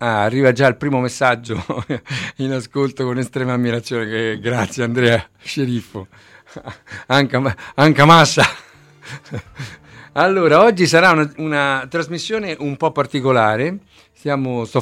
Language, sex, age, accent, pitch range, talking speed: Italian, male, 50-69, native, 115-145 Hz, 115 wpm